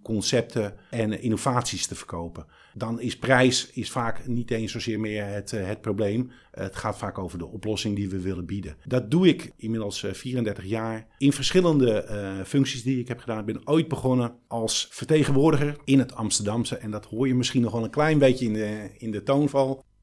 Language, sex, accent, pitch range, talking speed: Dutch, male, Dutch, 105-125 Hz, 195 wpm